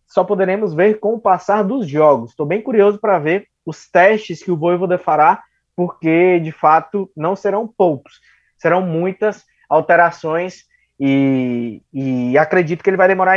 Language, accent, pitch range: Portuguese, Brazilian, 155-195 Hz